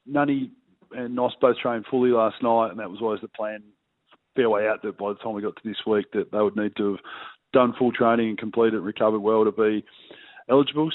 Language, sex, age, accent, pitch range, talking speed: English, male, 20-39, Australian, 110-120 Hz, 235 wpm